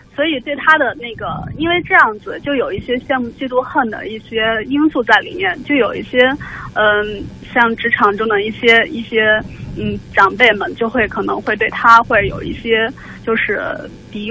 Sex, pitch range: female, 220-280 Hz